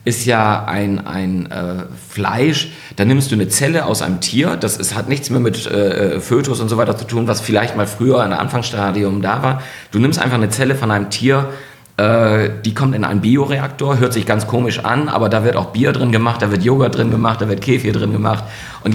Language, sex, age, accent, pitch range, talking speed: German, male, 40-59, German, 100-120 Hz, 230 wpm